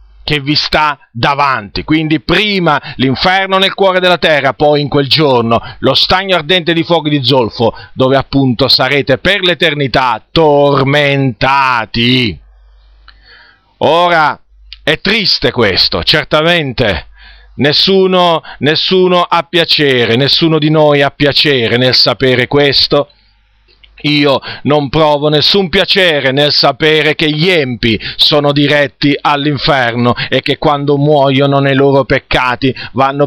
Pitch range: 125-155 Hz